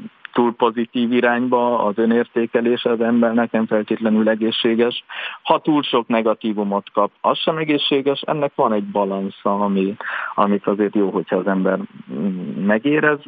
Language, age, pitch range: Hungarian, 50-69, 100-125 Hz